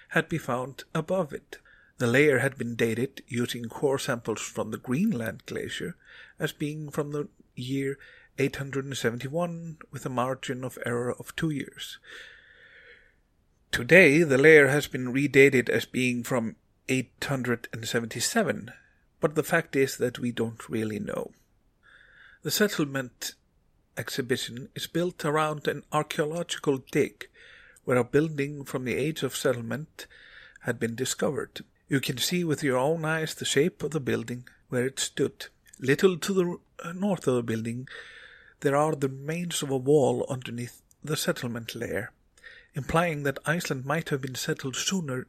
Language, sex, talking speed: English, male, 145 wpm